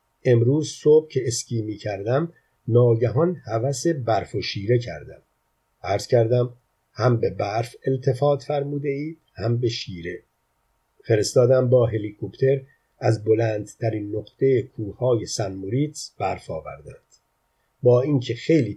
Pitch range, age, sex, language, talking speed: 110-135 Hz, 50-69, male, Persian, 120 wpm